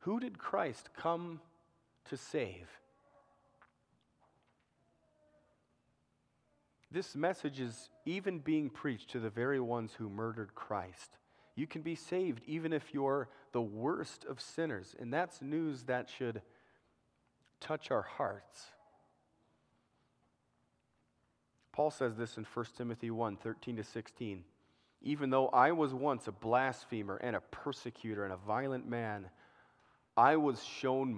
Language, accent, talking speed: English, American, 125 wpm